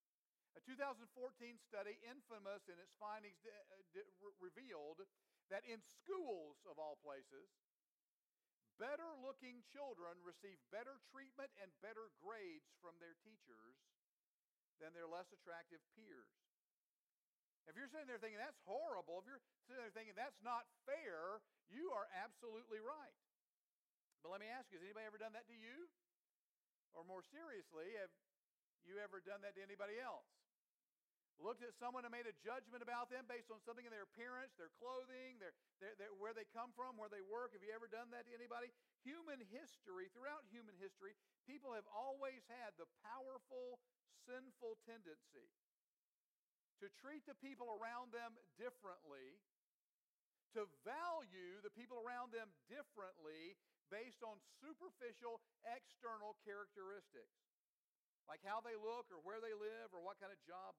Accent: American